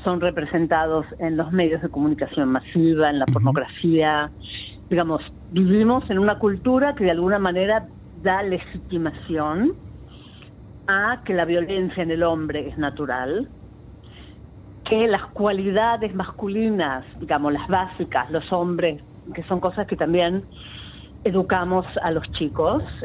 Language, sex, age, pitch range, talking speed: Spanish, female, 40-59, 150-185 Hz, 130 wpm